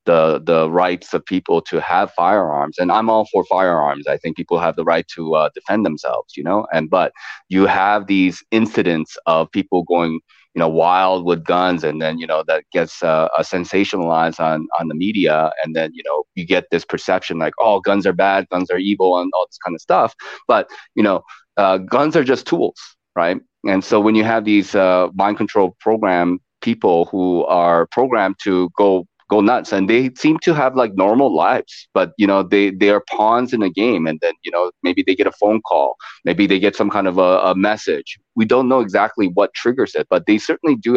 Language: English